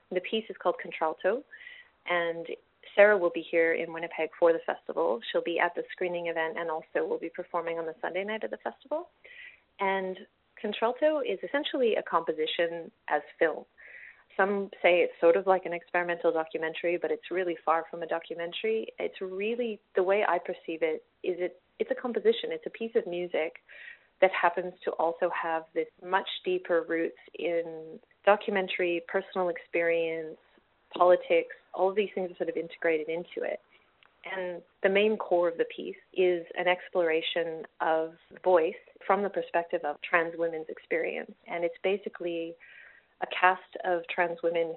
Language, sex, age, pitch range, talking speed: English, female, 30-49, 170-210 Hz, 165 wpm